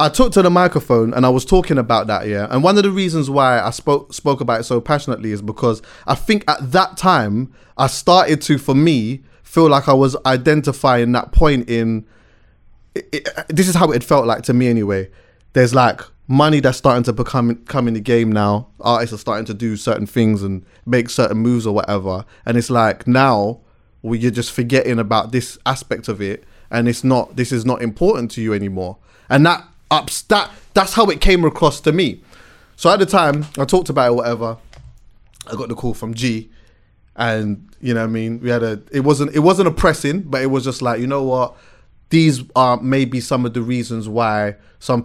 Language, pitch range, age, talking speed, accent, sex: English, 115-145 Hz, 20-39, 215 wpm, British, male